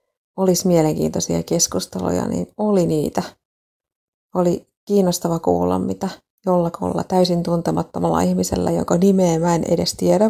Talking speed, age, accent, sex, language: 110 wpm, 30-49, native, female, Finnish